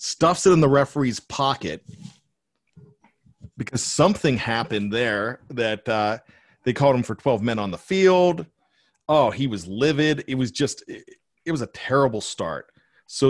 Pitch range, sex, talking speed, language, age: 110-155 Hz, male, 160 wpm, English, 40-59